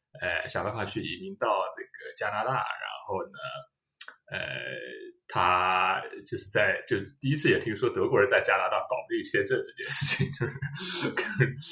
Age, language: 20-39, Chinese